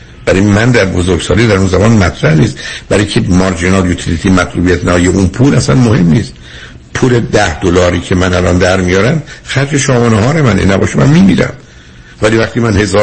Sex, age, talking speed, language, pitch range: male, 60-79, 180 wpm, Persian, 85-110 Hz